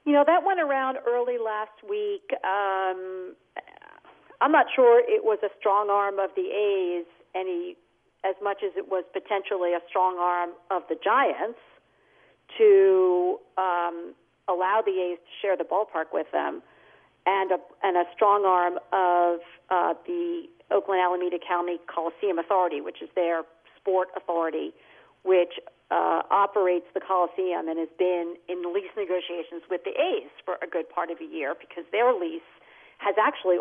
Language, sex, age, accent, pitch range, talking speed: English, female, 50-69, American, 175-265 Hz, 155 wpm